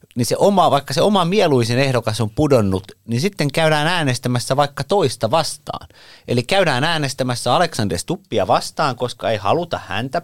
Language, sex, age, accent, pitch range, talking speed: Finnish, male, 30-49, native, 100-140 Hz, 160 wpm